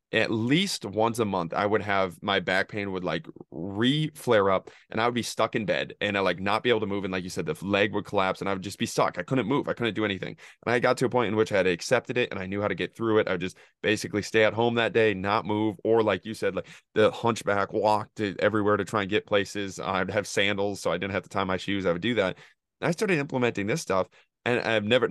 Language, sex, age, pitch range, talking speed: English, male, 20-39, 95-120 Hz, 290 wpm